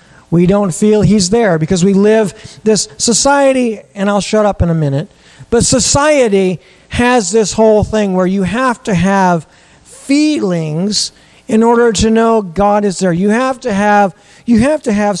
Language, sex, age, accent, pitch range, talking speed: English, male, 40-59, American, 165-220 Hz, 175 wpm